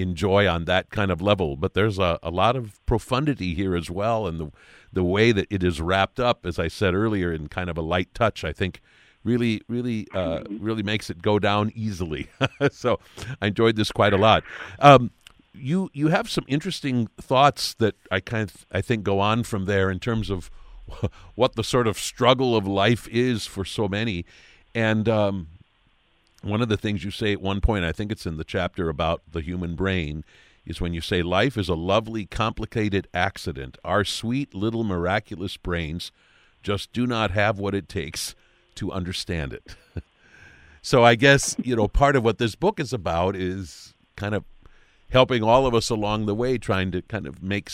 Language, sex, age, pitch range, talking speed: English, male, 50-69, 90-115 Hz, 195 wpm